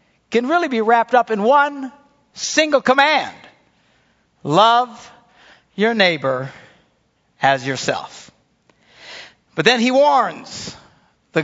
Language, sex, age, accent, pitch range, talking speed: English, male, 60-79, American, 150-225 Hz, 100 wpm